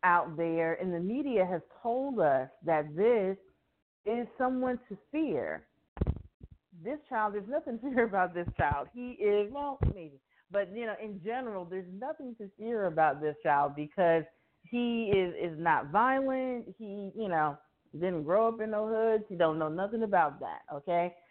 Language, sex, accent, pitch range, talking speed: English, female, American, 160-215 Hz, 170 wpm